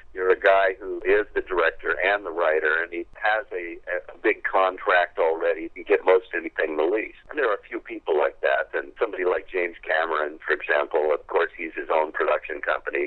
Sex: male